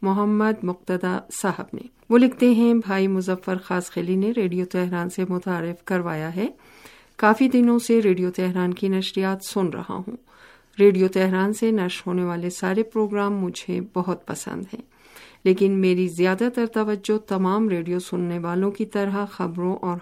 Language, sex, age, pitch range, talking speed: Urdu, female, 50-69, 180-205 Hz, 160 wpm